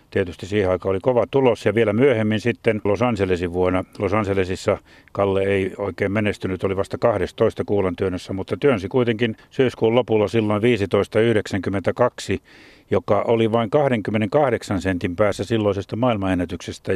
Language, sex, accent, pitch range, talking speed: Finnish, male, native, 95-115 Hz, 135 wpm